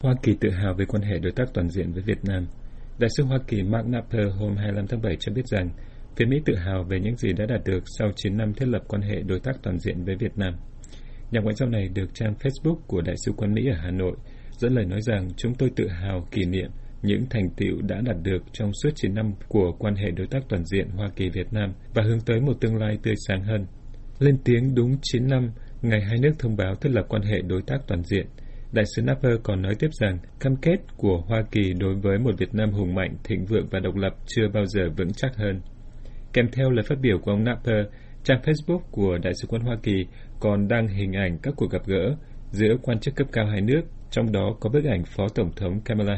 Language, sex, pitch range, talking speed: Vietnamese, male, 95-120 Hz, 250 wpm